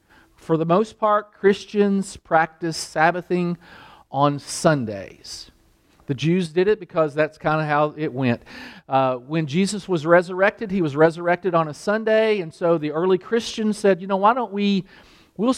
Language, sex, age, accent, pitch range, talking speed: English, male, 40-59, American, 165-220 Hz, 165 wpm